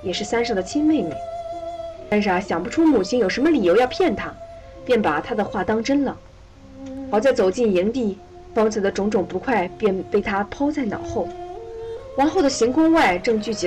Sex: female